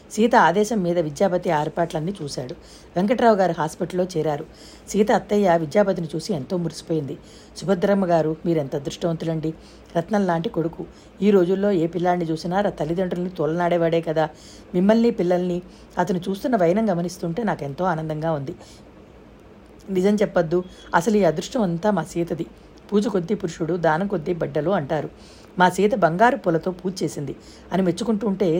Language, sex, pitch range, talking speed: Telugu, female, 160-195 Hz, 130 wpm